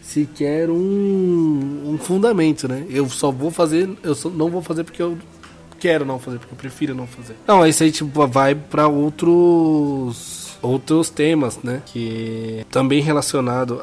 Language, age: Portuguese, 20-39